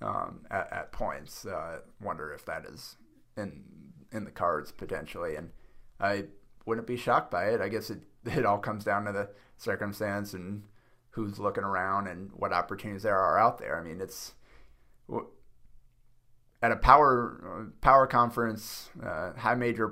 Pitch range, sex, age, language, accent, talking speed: 100-115 Hz, male, 30-49, English, American, 165 wpm